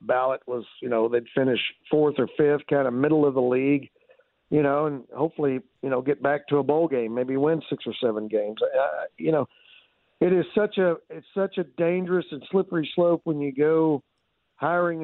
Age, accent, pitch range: 50-69, American, 130-165 Hz